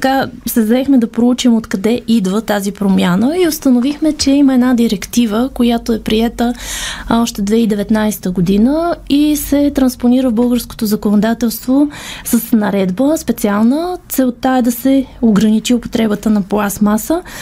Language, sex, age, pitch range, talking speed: Bulgarian, female, 20-39, 225-280 Hz, 130 wpm